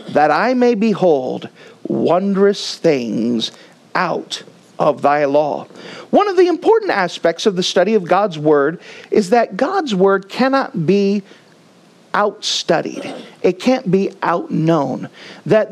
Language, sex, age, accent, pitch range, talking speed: English, male, 40-59, American, 165-235 Hz, 125 wpm